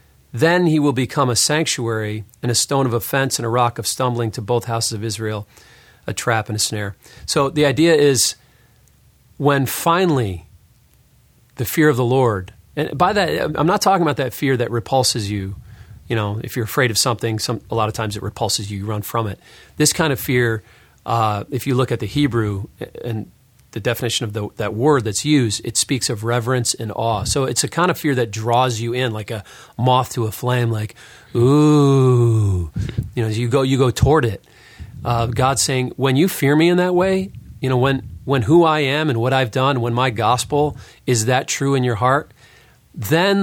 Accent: American